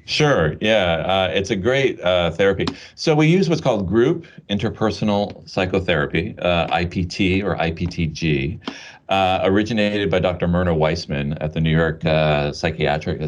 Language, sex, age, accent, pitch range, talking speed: English, male, 30-49, American, 75-100 Hz, 145 wpm